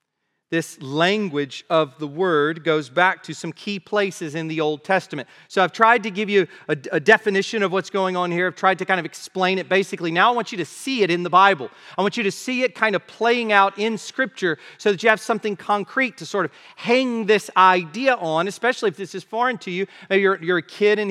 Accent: American